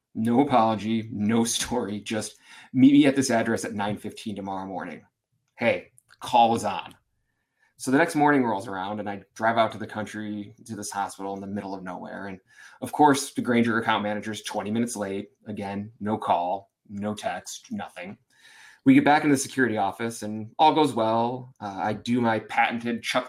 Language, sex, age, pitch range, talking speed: English, male, 20-39, 105-130 Hz, 190 wpm